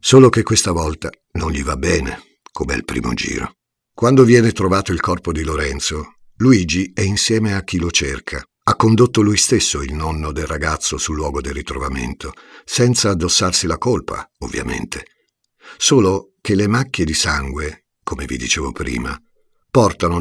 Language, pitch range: Italian, 80-100 Hz